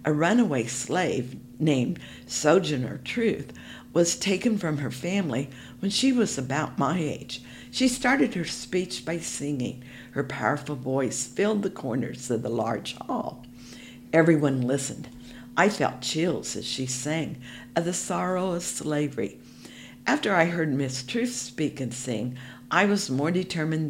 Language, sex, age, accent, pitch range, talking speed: English, female, 60-79, American, 125-180 Hz, 145 wpm